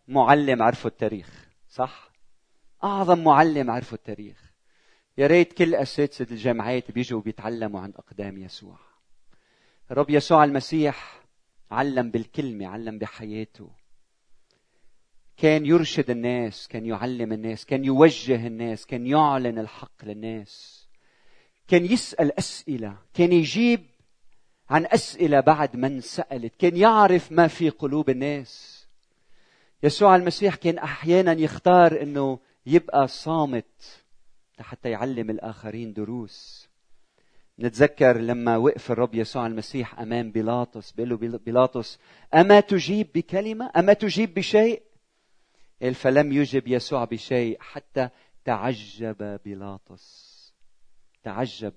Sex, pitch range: male, 115-155 Hz